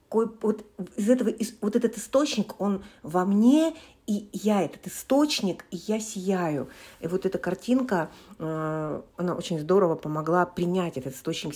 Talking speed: 130 wpm